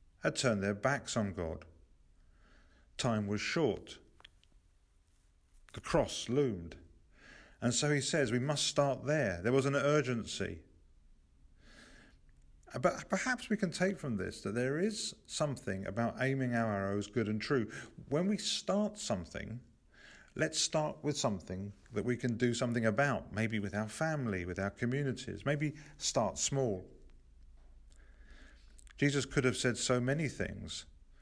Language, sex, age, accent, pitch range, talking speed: English, male, 50-69, British, 90-130 Hz, 140 wpm